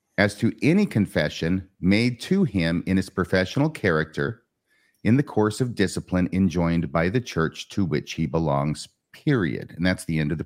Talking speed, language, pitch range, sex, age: 180 wpm, English, 90-115 Hz, male, 40-59